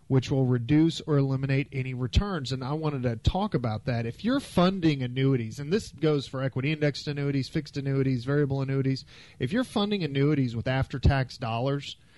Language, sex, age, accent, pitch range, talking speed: English, male, 40-59, American, 125-155 Hz, 175 wpm